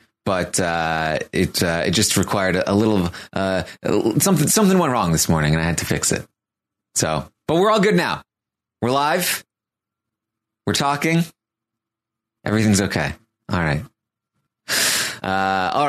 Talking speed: 145 wpm